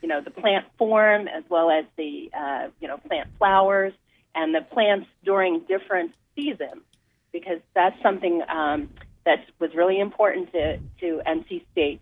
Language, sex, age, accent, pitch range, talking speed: English, female, 40-59, American, 160-210 Hz, 160 wpm